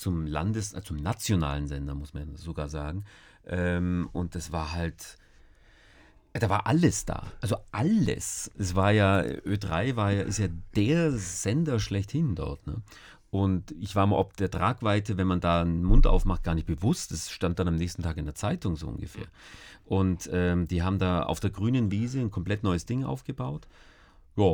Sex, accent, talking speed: male, German, 185 wpm